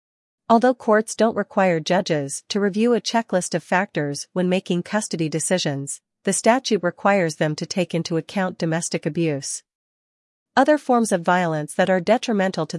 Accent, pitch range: American, 165-205 Hz